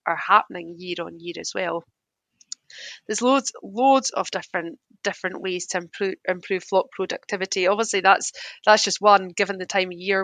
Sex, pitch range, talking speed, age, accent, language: female, 175-210 Hz, 170 wpm, 30-49, British, English